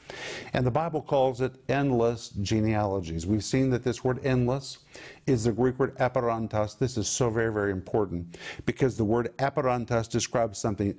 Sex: male